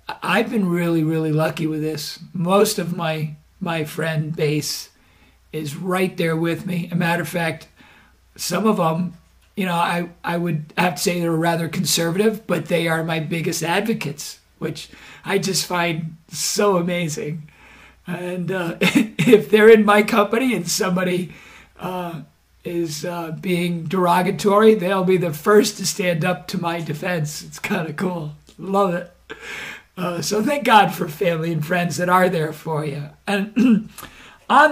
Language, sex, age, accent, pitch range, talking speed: English, male, 50-69, American, 160-195 Hz, 160 wpm